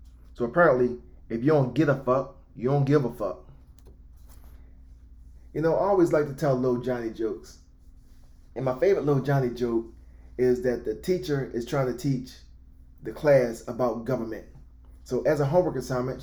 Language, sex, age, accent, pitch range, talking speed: English, male, 20-39, American, 105-145 Hz, 170 wpm